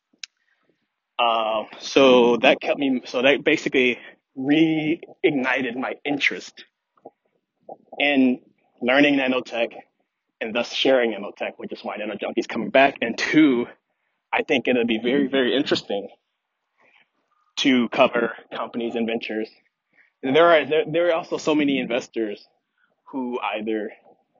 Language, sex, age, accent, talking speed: English, male, 20-39, American, 125 wpm